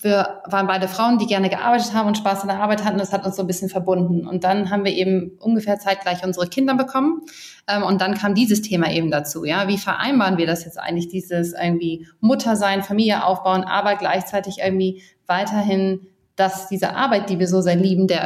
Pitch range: 180-205 Hz